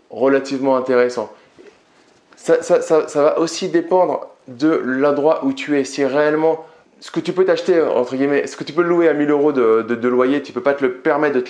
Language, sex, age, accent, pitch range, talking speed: French, male, 20-39, French, 120-150 Hz, 230 wpm